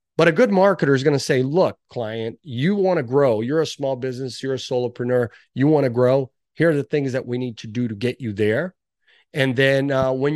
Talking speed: 245 wpm